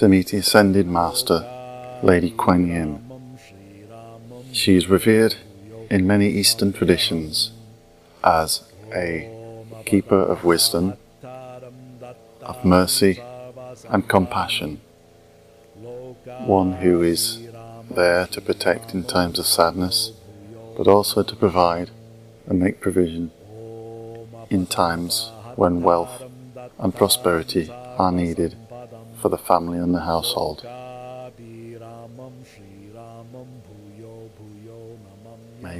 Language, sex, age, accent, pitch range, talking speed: English, male, 40-59, British, 90-115 Hz, 95 wpm